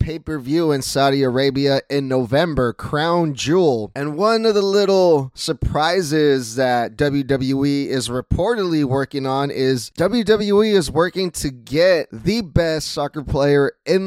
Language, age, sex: English, 20-39, male